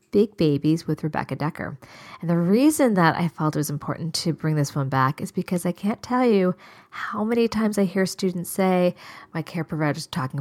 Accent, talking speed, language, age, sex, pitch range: American, 215 wpm, English, 40-59, female, 150-190 Hz